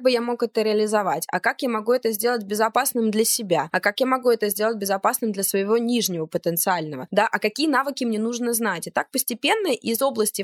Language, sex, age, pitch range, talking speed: Russian, female, 20-39, 180-230 Hz, 215 wpm